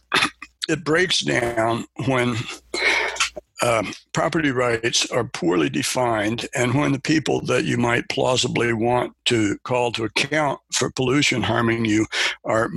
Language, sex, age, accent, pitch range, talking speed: English, male, 60-79, American, 115-140 Hz, 130 wpm